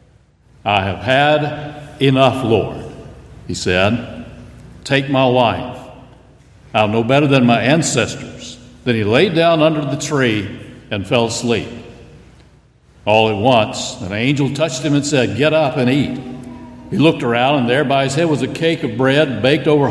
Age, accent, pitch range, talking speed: 60-79, American, 120-150 Hz, 165 wpm